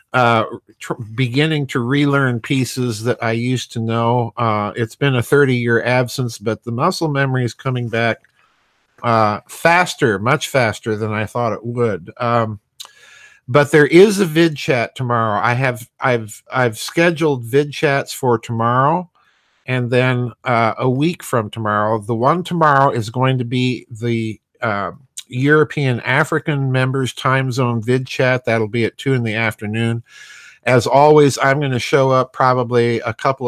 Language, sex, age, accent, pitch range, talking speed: English, male, 50-69, American, 115-135 Hz, 160 wpm